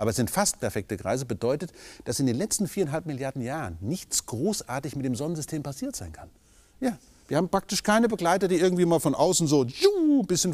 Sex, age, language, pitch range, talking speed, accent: male, 40-59, German, 105-155 Hz, 210 wpm, German